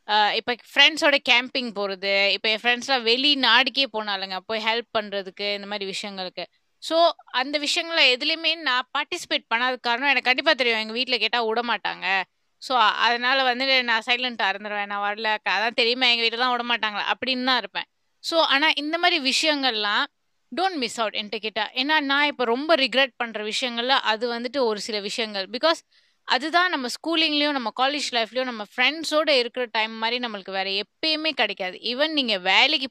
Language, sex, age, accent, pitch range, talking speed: Tamil, female, 20-39, native, 220-280 Hz, 165 wpm